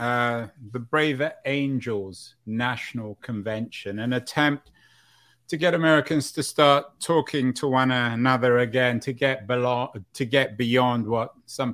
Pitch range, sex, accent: 110-135 Hz, male, British